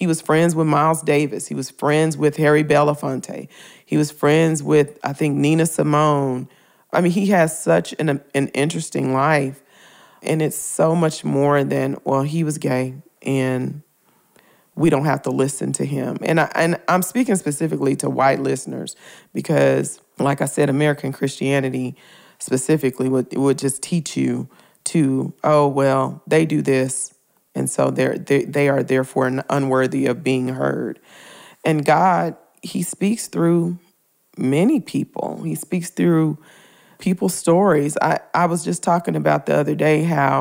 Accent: American